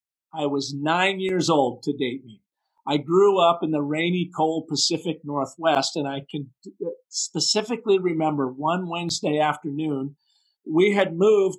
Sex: male